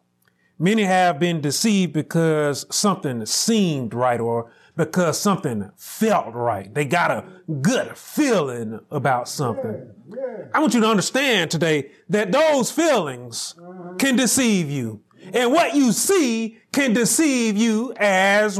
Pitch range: 170-255 Hz